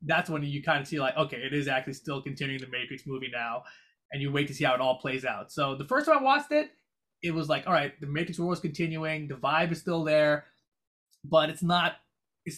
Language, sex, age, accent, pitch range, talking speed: English, male, 20-39, American, 145-185 Hz, 245 wpm